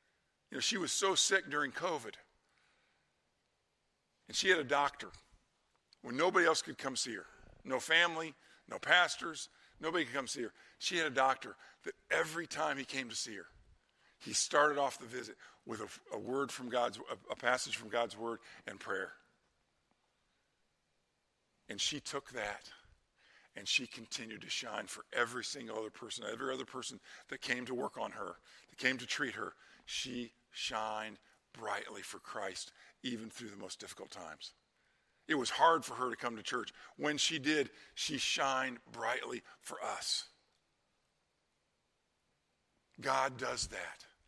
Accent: American